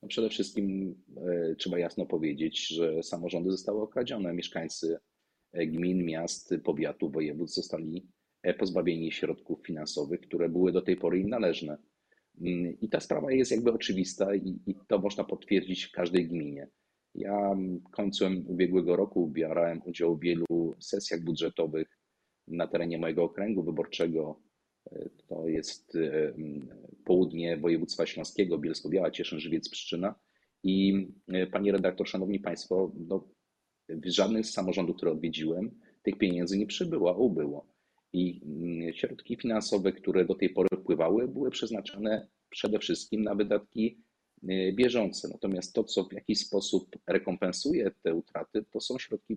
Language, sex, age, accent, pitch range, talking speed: Polish, male, 40-59, native, 85-100 Hz, 130 wpm